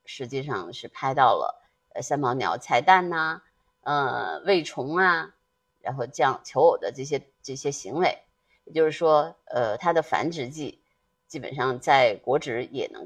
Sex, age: female, 30-49